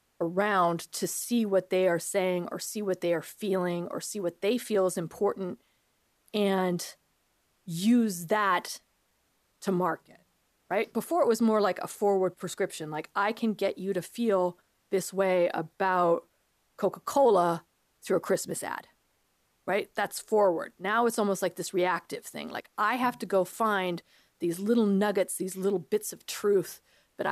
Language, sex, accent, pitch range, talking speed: English, female, American, 180-210 Hz, 165 wpm